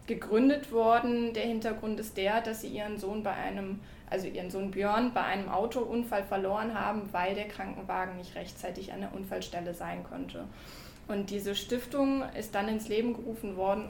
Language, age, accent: German, 20-39, German